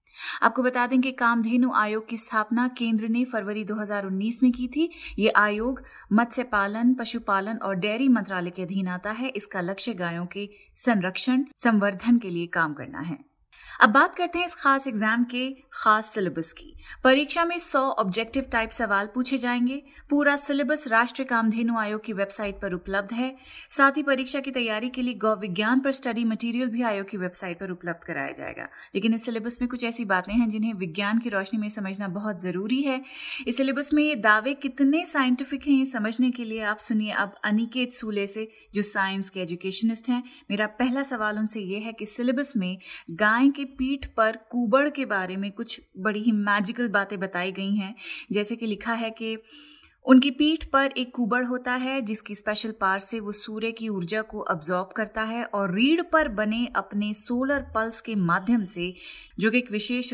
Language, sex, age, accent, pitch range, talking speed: Hindi, female, 30-49, native, 205-255 Hz, 190 wpm